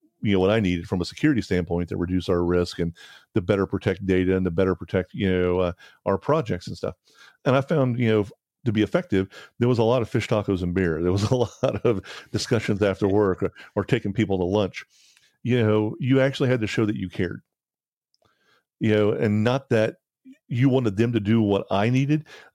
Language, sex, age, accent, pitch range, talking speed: English, male, 40-59, American, 95-115 Hz, 220 wpm